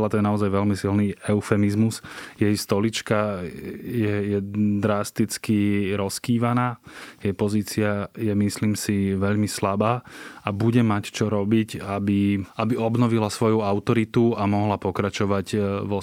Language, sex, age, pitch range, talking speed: Slovak, male, 20-39, 105-115 Hz, 125 wpm